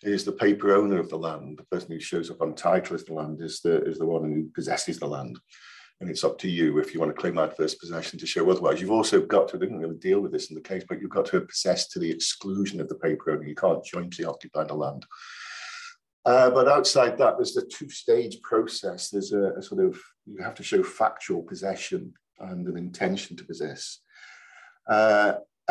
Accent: British